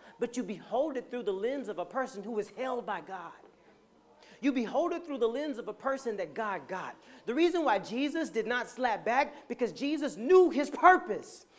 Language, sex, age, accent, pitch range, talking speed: English, male, 40-59, American, 225-310 Hz, 205 wpm